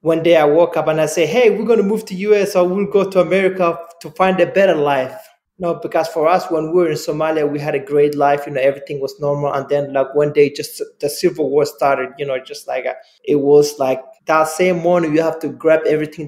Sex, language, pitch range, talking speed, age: male, English, 145-170 Hz, 260 wpm, 20-39